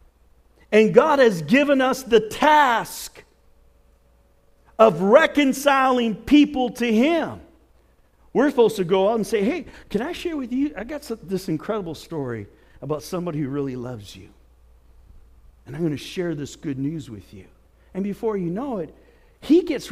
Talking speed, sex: 160 wpm, male